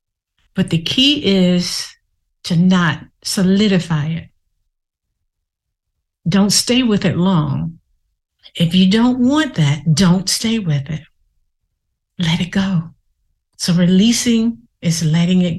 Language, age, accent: English, 50-69, American